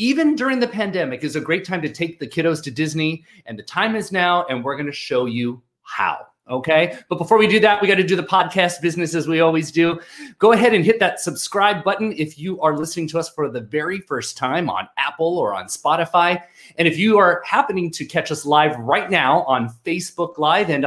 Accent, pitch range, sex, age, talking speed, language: American, 140-195 Hz, male, 30-49, 235 wpm, English